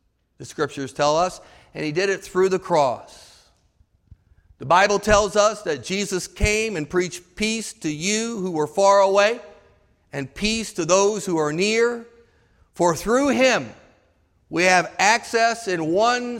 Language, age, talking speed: English, 50-69, 155 wpm